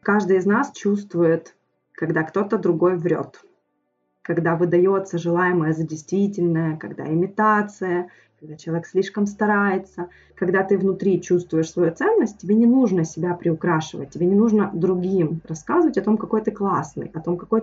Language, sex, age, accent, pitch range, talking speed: Russian, female, 20-39, native, 165-200 Hz, 145 wpm